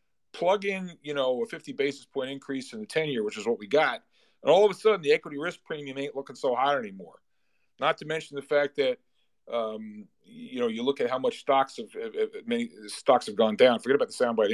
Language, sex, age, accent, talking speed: English, male, 40-59, American, 245 wpm